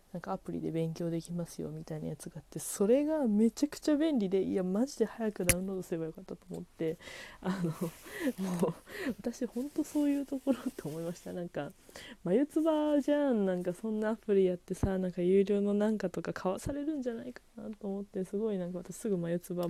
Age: 20-39